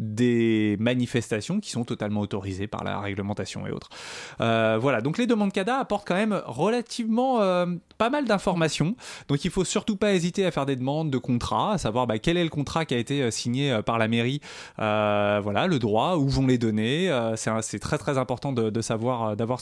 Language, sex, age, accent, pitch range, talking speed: French, male, 20-39, French, 110-155 Hz, 215 wpm